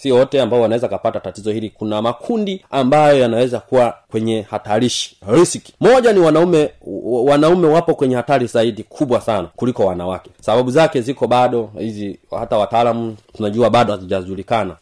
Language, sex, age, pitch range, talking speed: Swahili, male, 30-49, 100-125 Hz, 150 wpm